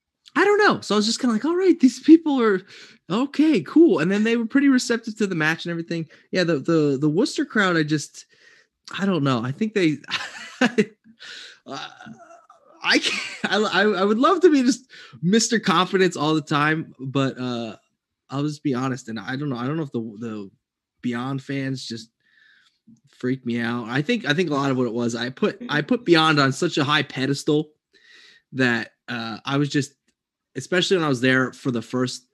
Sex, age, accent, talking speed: male, 20-39, American, 205 wpm